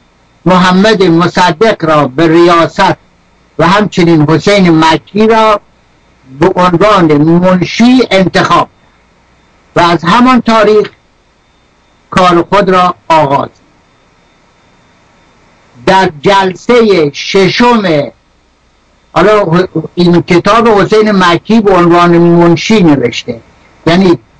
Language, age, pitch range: Persian, 60-79, 160-195 Hz